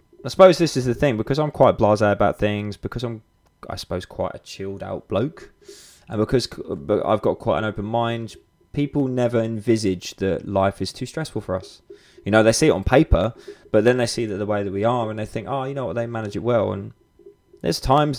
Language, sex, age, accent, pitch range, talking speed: English, male, 20-39, British, 95-120 Hz, 230 wpm